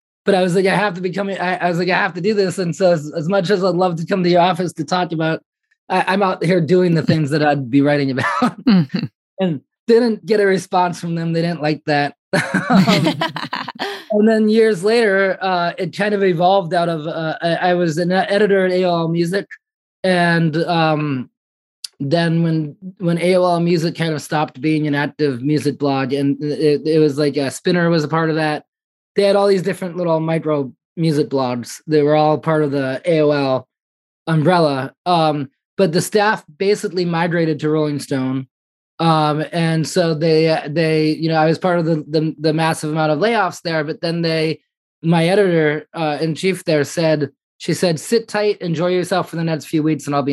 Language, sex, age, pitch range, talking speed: English, male, 20-39, 150-185 Hz, 205 wpm